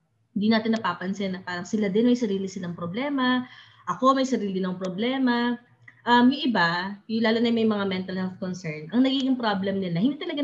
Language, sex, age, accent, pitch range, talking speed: English, female, 20-39, Filipino, 175-225 Hz, 195 wpm